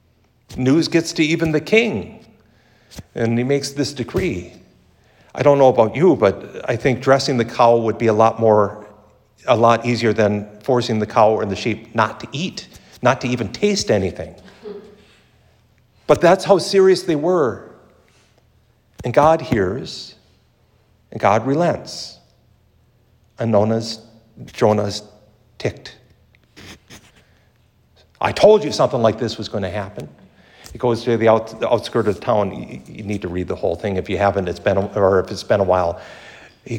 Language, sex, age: English, male, 50-69